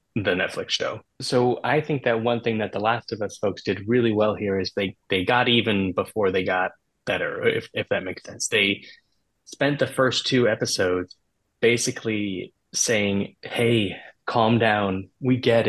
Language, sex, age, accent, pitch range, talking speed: English, male, 20-39, American, 100-120 Hz, 175 wpm